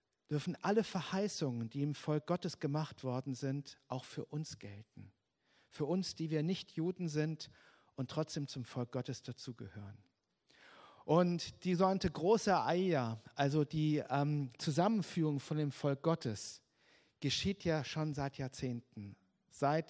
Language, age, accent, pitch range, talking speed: German, 50-69, German, 125-170 Hz, 140 wpm